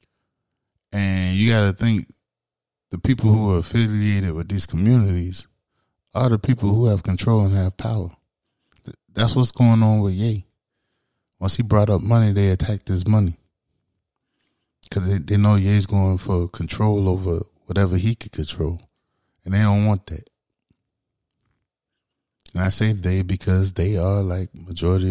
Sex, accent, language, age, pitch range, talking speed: male, American, English, 20-39, 90-105 Hz, 150 wpm